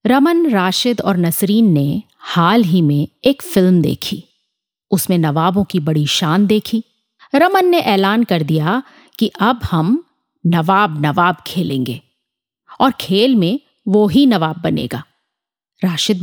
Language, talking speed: Hindi, 135 wpm